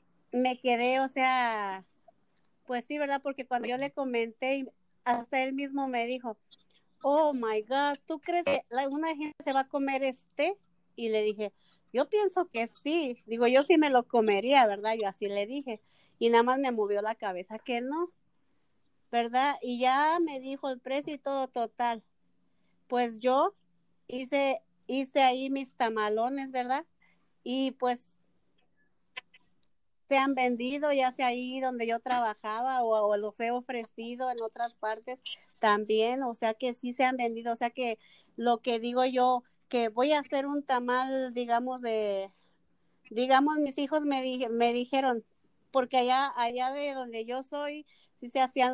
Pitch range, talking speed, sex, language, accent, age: 230-270 Hz, 165 wpm, female, English, American, 40-59